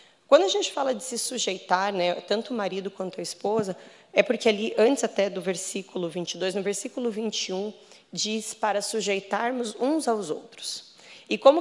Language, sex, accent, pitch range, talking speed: Portuguese, female, Brazilian, 195-250 Hz, 170 wpm